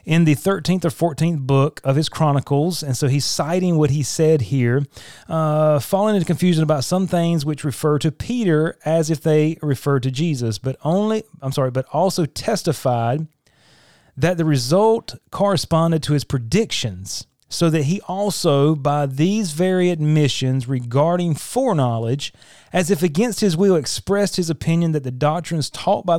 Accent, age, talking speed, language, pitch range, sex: American, 30-49, 165 wpm, English, 140-175 Hz, male